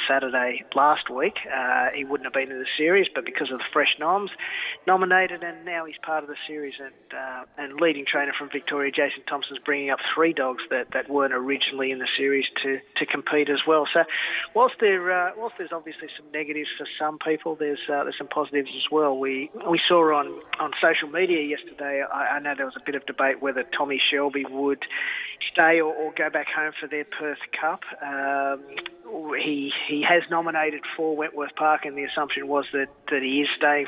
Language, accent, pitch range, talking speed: English, Australian, 140-155 Hz, 210 wpm